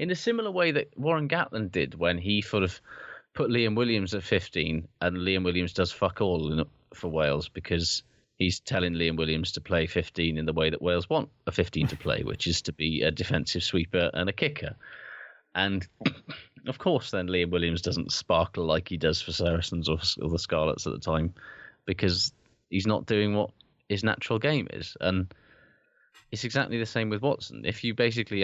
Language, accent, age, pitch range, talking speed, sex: English, British, 20-39, 85-115 Hz, 195 wpm, male